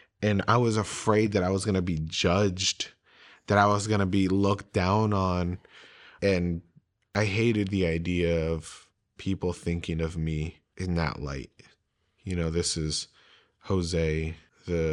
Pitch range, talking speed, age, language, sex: 80-95 Hz, 150 wpm, 30-49, English, male